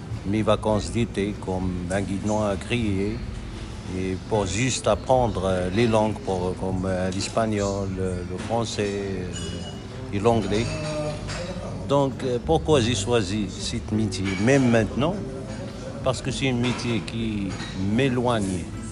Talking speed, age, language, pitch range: 115 wpm, 60-79, French, 100-120 Hz